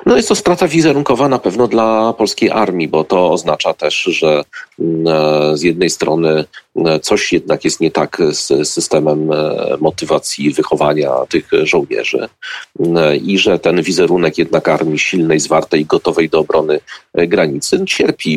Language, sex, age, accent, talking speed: Polish, male, 40-59, native, 135 wpm